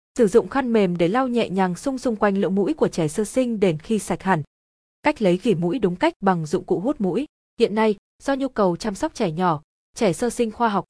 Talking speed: 255 wpm